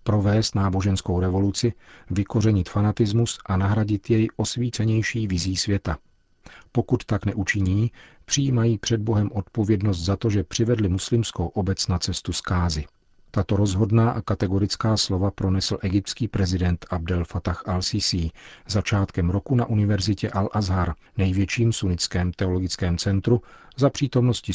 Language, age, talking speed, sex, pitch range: Czech, 40-59, 120 wpm, male, 90-110 Hz